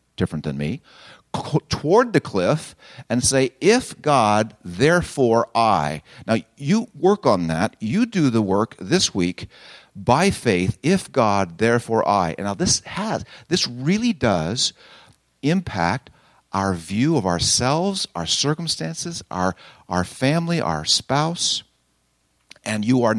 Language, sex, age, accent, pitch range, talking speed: English, male, 50-69, American, 100-145 Hz, 130 wpm